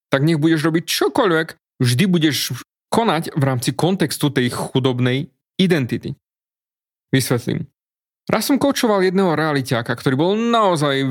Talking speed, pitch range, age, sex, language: 125 wpm, 130-185 Hz, 30-49, male, Slovak